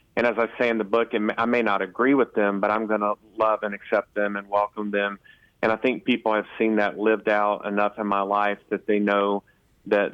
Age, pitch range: 40-59, 100-110 Hz